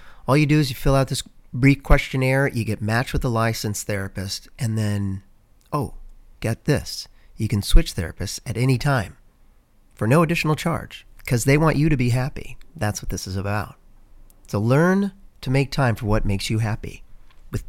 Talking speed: 190 wpm